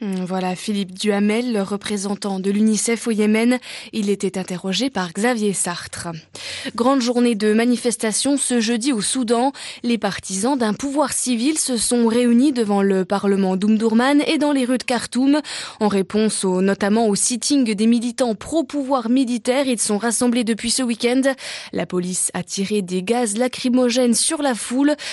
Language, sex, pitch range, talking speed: French, female, 205-260 Hz, 160 wpm